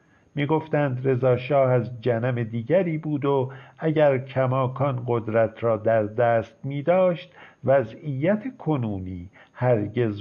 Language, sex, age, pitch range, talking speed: Persian, male, 50-69, 120-150 Hz, 105 wpm